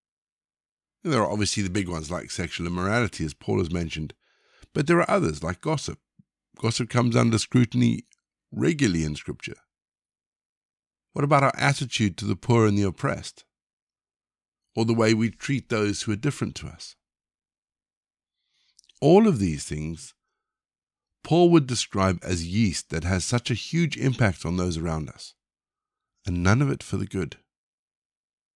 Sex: male